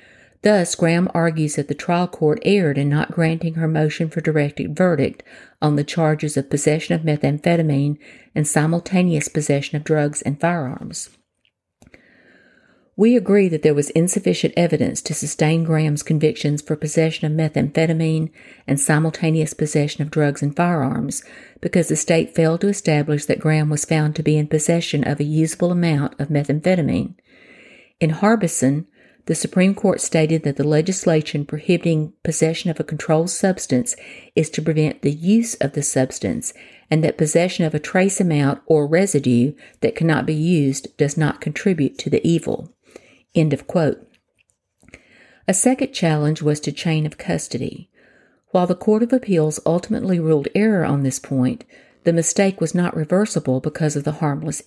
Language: English